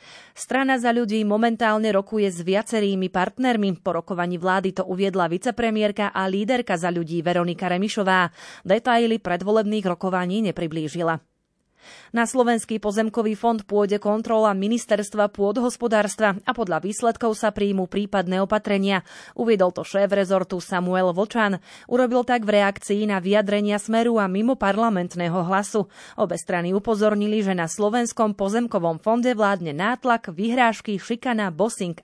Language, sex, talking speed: Slovak, female, 130 wpm